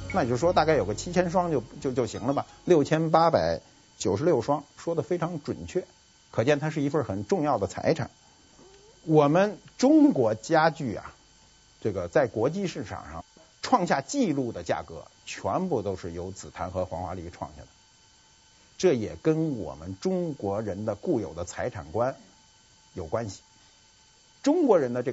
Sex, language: male, Chinese